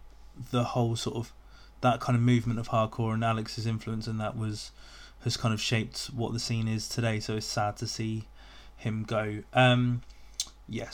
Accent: British